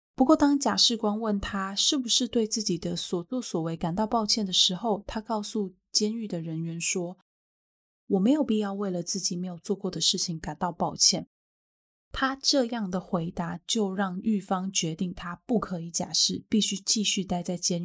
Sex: female